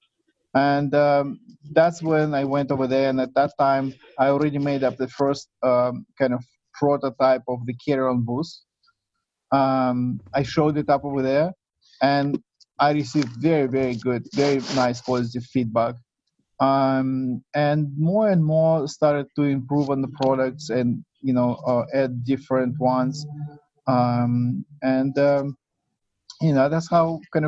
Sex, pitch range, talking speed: male, 125-150 Hz, 150 wpm